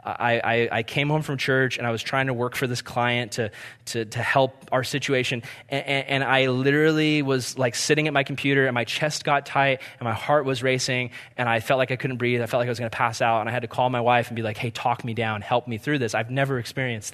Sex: male